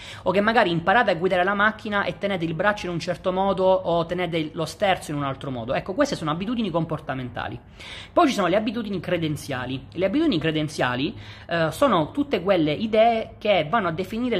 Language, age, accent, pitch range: Italian, 30-49, native, 145-195 Hz